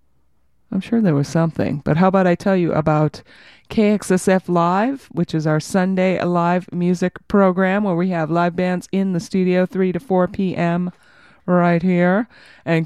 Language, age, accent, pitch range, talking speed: English, 30-49, American, 170-215 Hz, 170 wpm